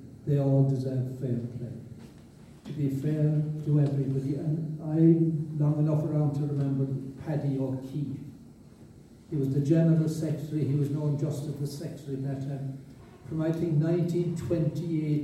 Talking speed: 155 wpm